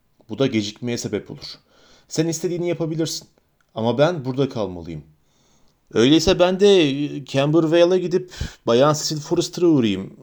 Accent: native